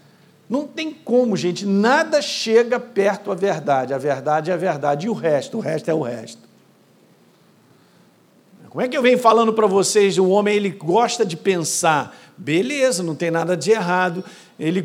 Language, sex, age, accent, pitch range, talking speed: Portuguese, male, 50-69, Brazilian, 180-225 Hz, 175 wpm